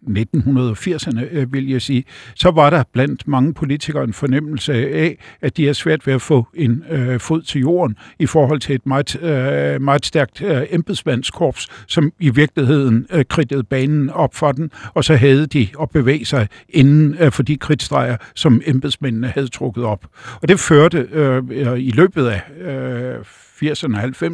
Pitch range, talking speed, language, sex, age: 125-155 Hz, 155 wpm, Danish, male, 60-79